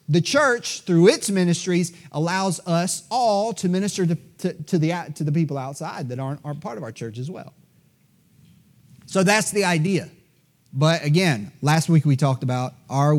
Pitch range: 135-175 Hz